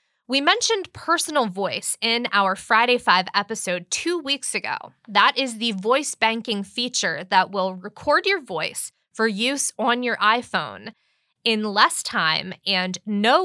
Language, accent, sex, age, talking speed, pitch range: English, American, female, 20-39, 145 wpm, 200-280 Hz